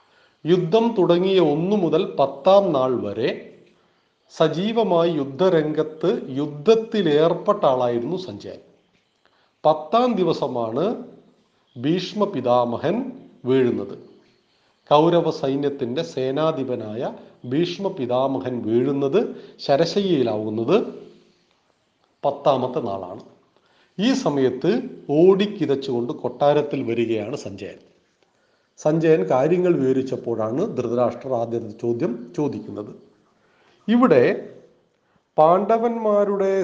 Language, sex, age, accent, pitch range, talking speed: Malayalam, male, 40-59, native, 130-190 Hz, 65 wpm